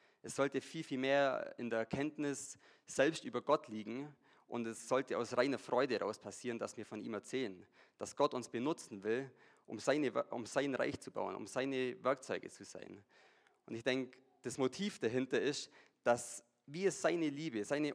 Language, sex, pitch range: English, male, 120-150 Hz